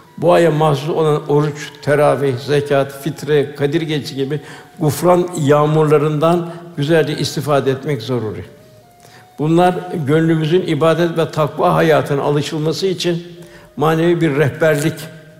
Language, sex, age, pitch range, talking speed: Turkish, male, 60-79, 140-170 Hz, 110 wpm